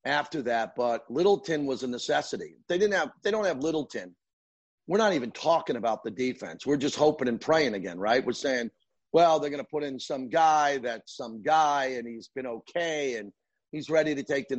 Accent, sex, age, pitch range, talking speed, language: American, male, 40-59, 125-155 Hz, 205 wpm, English